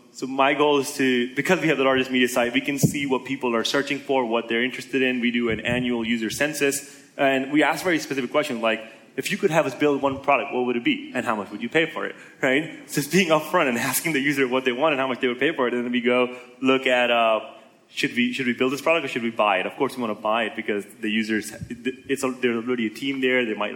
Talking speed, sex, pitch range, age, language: 290 wpm, male, 115-135 Hz, 20-39, English